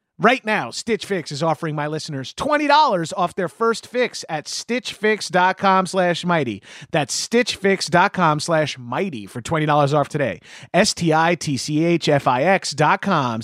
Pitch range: 140-185 Hz